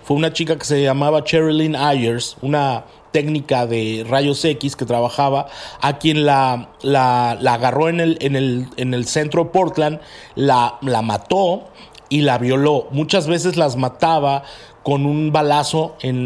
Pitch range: 130-160 Hz